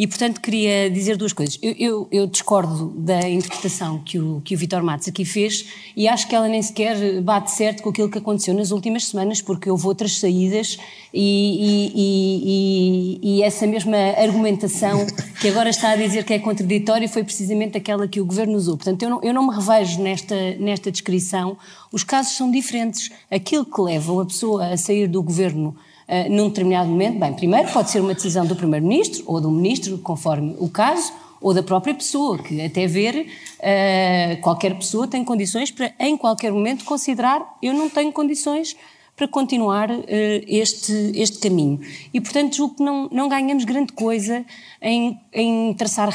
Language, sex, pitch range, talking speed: Portuguese, female, 190-230 Hz, 180 wpm